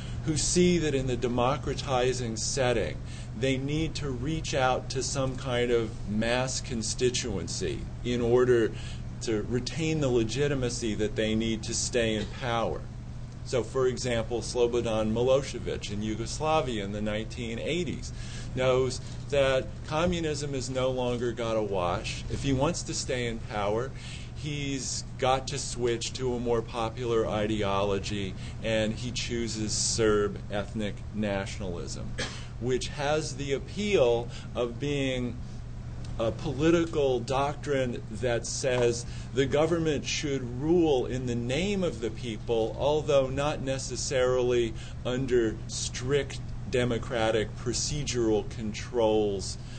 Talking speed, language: 120 wpm, English